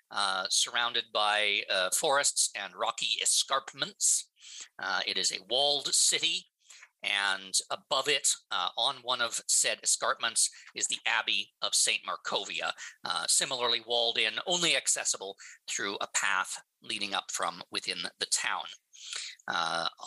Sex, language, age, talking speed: male, English, 50-69, 135 wpm